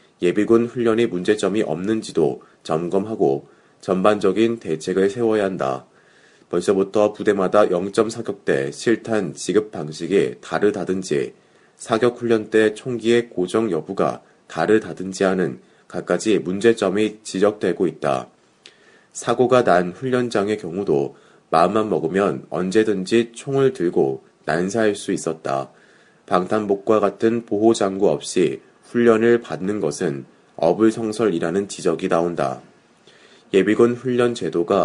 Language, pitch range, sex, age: Korean, 95-115 Hz, male, 30-49